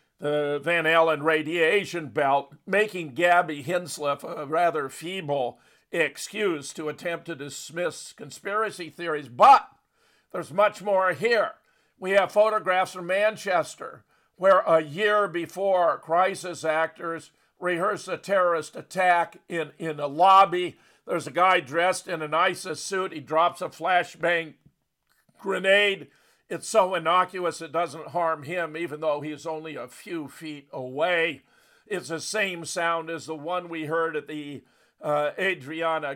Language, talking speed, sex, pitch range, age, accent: English, 140 wpm, male, 155-185 Hz, 50-69, American